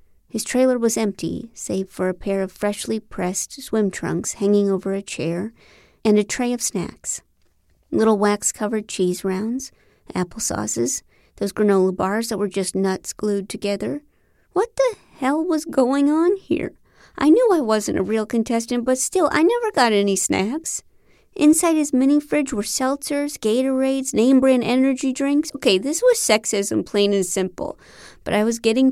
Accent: American